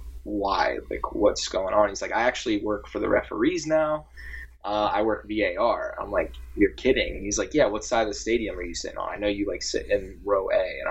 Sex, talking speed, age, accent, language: male, 235 wpm, 10-29, American, English